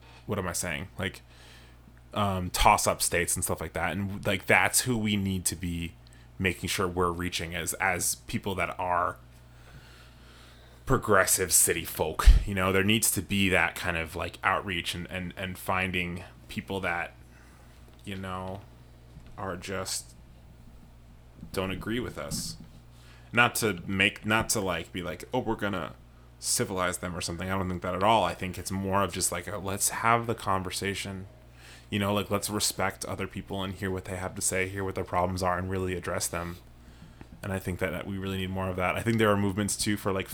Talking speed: 195 wpm